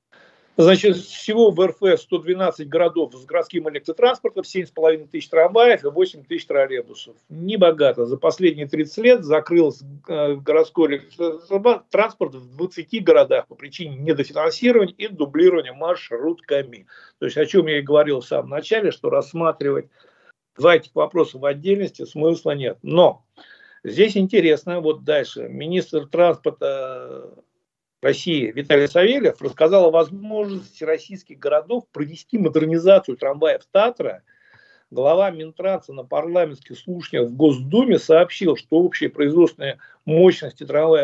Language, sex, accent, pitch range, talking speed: Russian, male, native, 155-240 Hz, 125 wpm